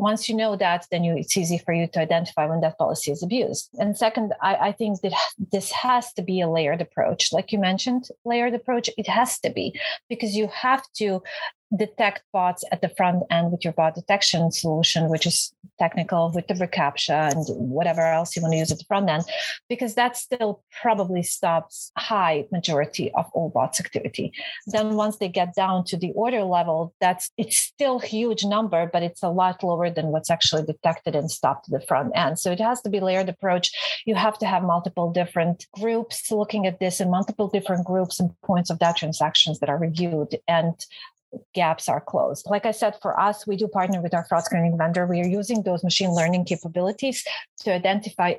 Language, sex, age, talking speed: English, female, 30-49, 205 wpm